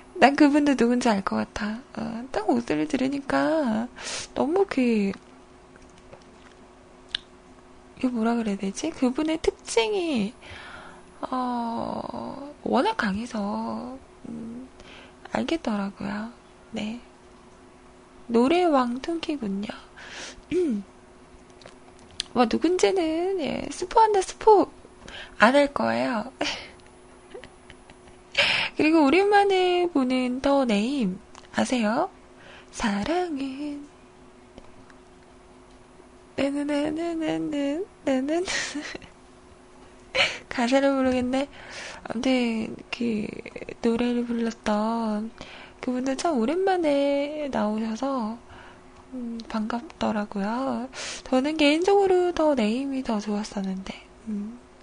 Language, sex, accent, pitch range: Korean, female, native, 215-300 Hz